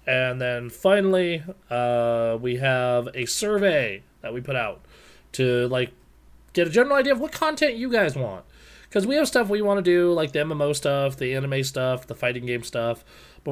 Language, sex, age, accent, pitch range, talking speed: English, male, 30-49, American, 115-150 Hz, 195 wpm